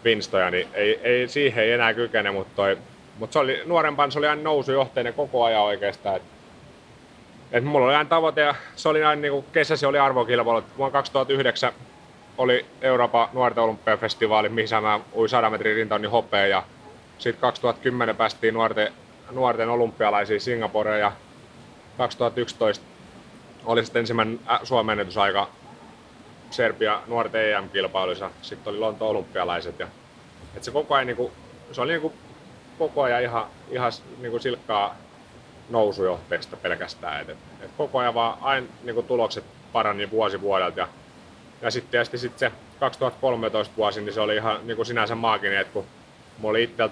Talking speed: 130 wpm